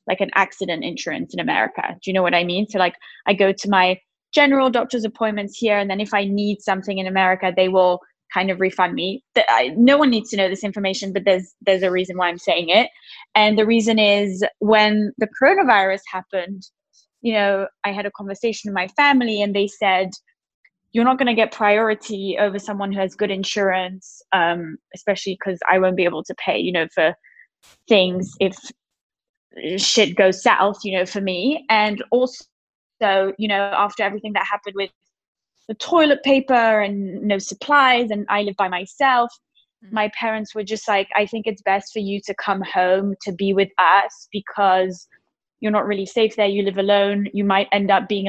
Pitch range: 190-215 Hz